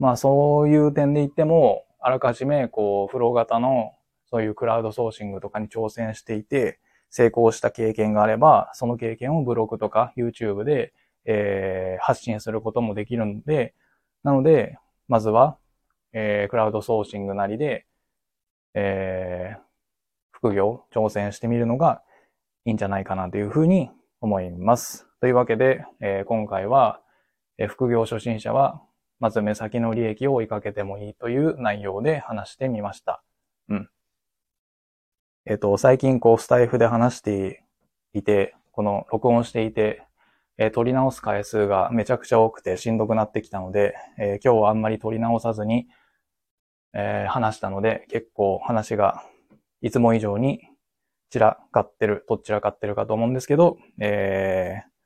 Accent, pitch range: native, 105-120 Hz